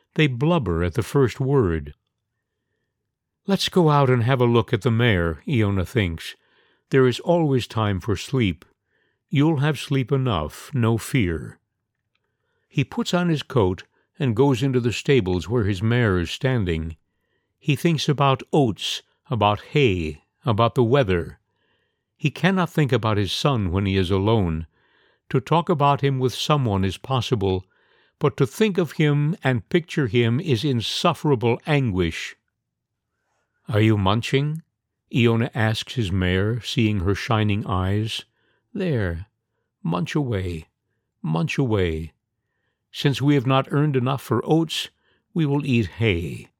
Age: 60-79